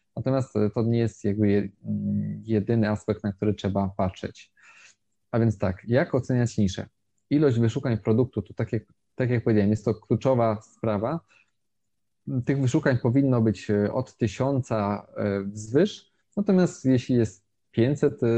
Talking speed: 135 wpm